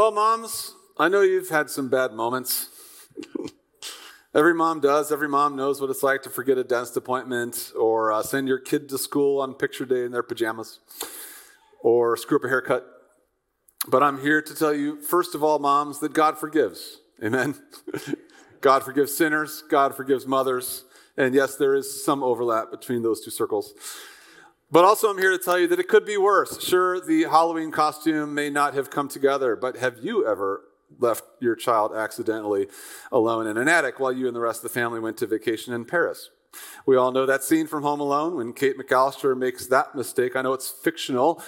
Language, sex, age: English, male, 40-59